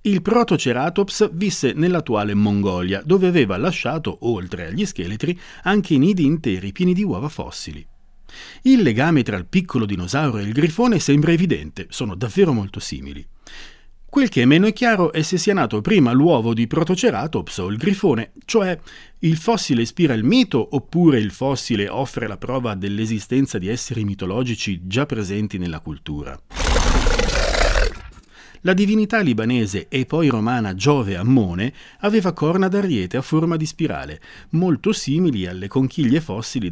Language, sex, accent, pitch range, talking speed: Italian, male, native, 105-170 Hz, 145 wpm